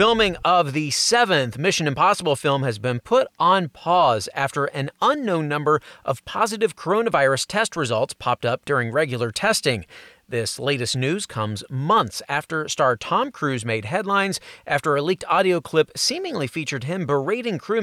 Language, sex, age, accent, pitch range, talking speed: English, male, 30-49, American, 135-205 Hz, 160 wpm